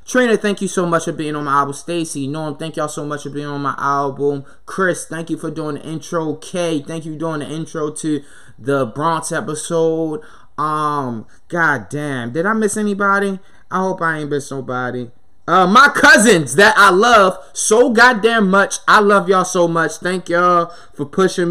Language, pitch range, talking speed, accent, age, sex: English, 145-185 Hz, 195 wpm, American, 20-39, male